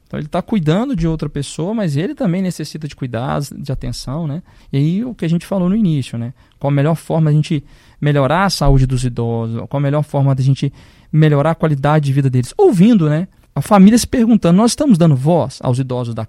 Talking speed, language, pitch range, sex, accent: 235 wpm, Portuguese, 130-170 Hz, male, Brazilian